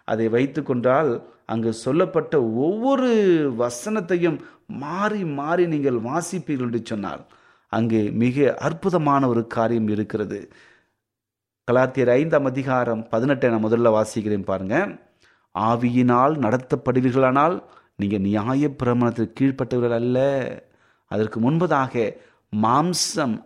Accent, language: native, Tamil